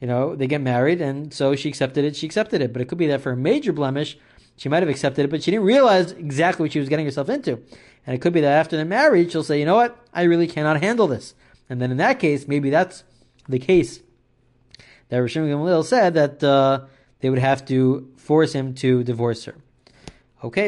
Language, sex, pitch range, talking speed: English, male, 125-170 Hz, 235 wpm